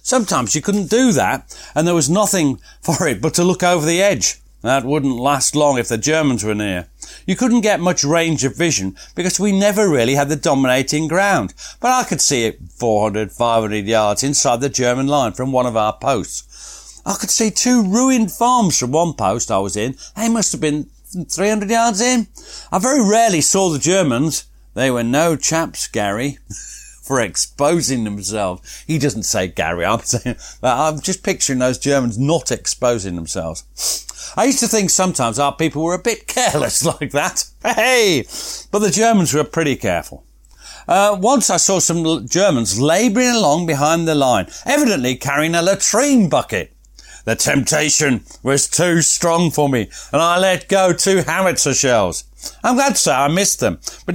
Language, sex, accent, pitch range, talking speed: English, male, British, 125-195 Hz, 175 wpm